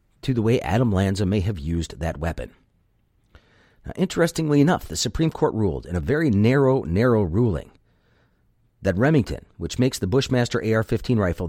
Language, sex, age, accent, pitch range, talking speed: English, male, 40-59, American, 95-125 Hz, 160 wpm